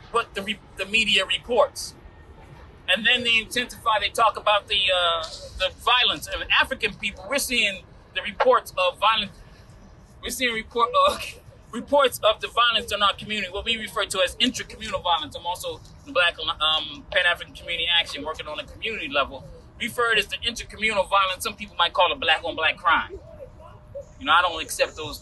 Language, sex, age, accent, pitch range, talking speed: English, male, 20-39, American, 190-270 Hz, 180 wpm